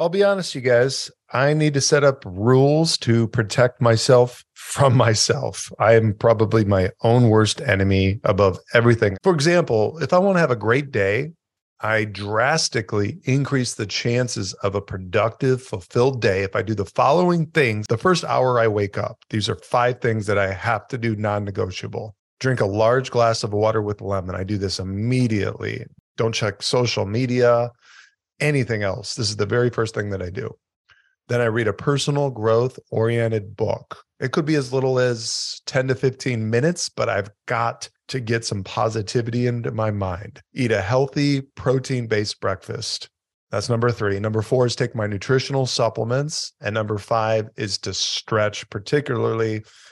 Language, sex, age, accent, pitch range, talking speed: English, male, 40-59, American, 105-130 Hz, 175 wpm